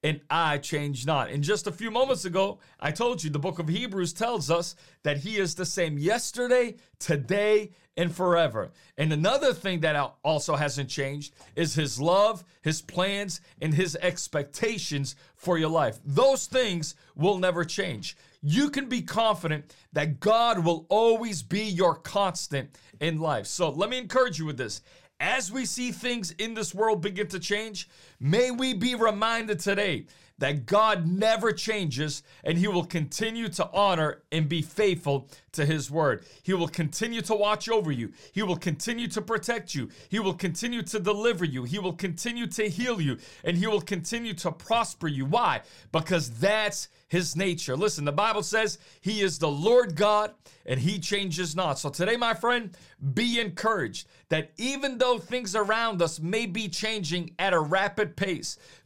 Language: English